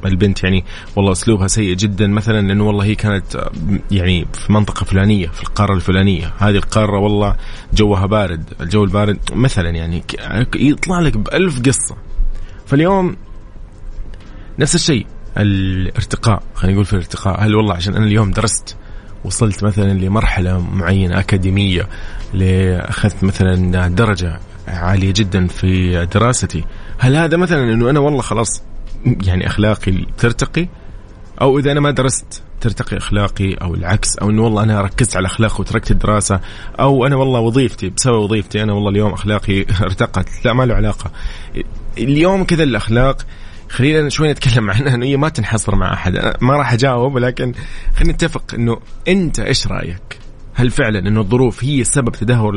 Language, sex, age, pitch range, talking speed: Arabic, male, 20-39, 95-120 Hz, 150 wpm